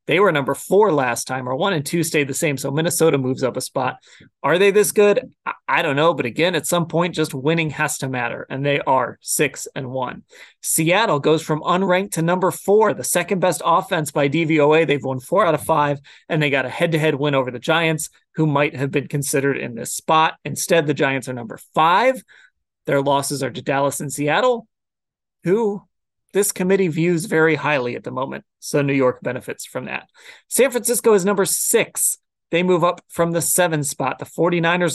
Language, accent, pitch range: English, American, 145-180 Hz